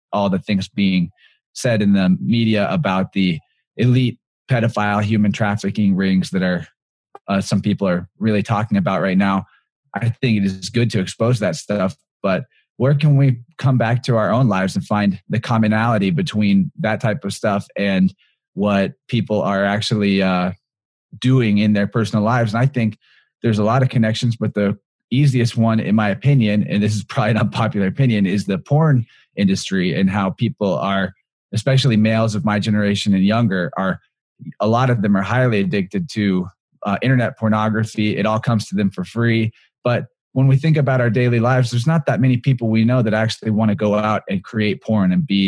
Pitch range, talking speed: 100-120 Hz, 195 wpm